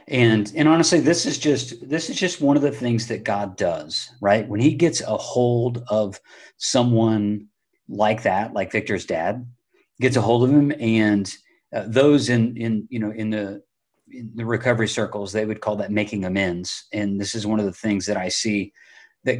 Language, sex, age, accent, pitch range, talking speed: English, male, 40-59, American, 105-130 Hz, 200 wpm